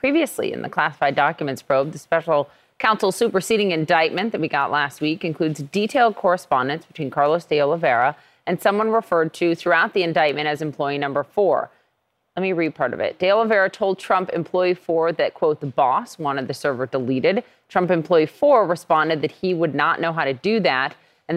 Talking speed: 190 wpm